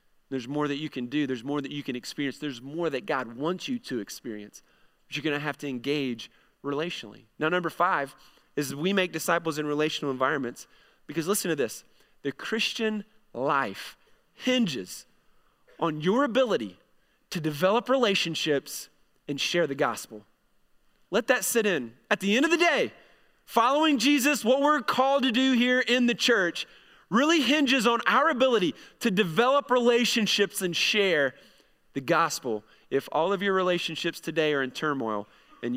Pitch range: 135-195 Hz